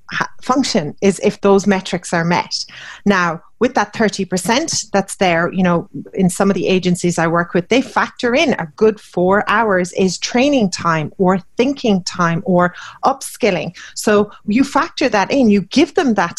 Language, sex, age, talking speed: English, female, 30-49, 170 wpm